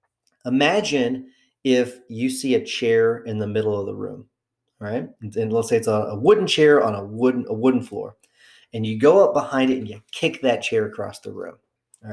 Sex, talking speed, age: male, 205 wpm, 40-59